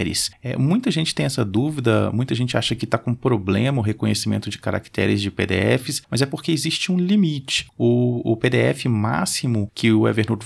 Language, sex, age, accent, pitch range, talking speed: Portuguese, male, 30-49, Brazilian, 100-125 Hz, 180 wpm